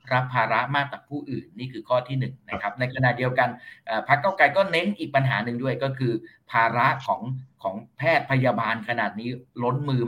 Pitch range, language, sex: 115-140 Hz, Thai, male